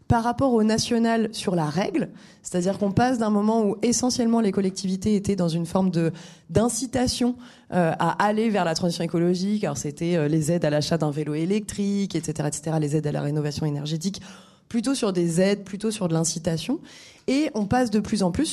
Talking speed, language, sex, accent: 195 wpm, French, female, French